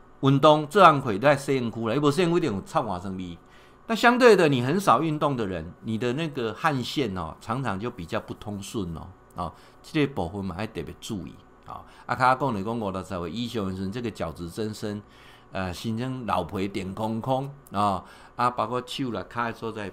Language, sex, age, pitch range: Chinese, male, 50-69, 95-120 Hz